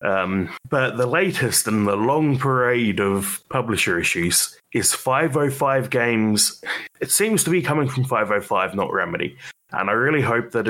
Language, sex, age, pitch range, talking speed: English, male, 30-49, 105-140 Hz, 155 wpm